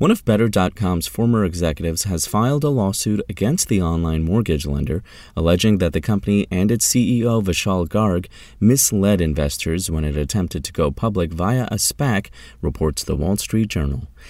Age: 30-49